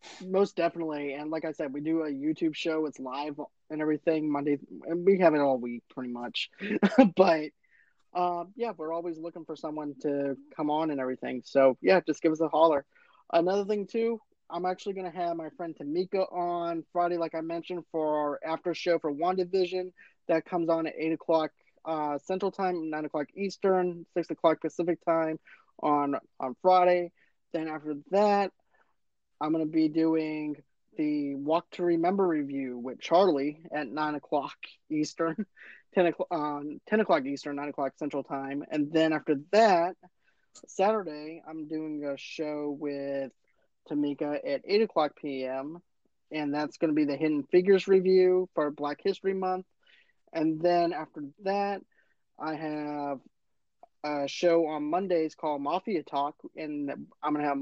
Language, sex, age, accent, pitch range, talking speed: English, male, 20-39, American, 150-180 Hz, 165 wpm